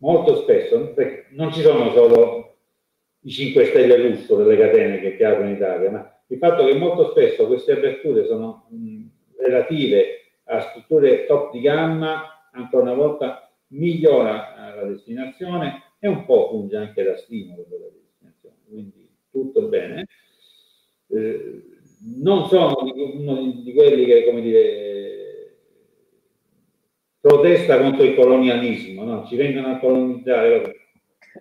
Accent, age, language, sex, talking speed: native, 50-69, Italian, male, 130 wpm